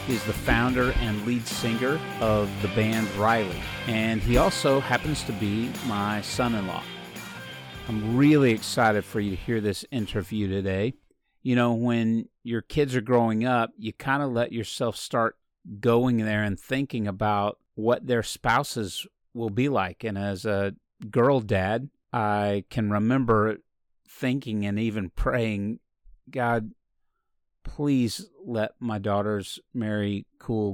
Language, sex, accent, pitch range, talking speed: English, male, American, 105-125 Hz, 145 wpm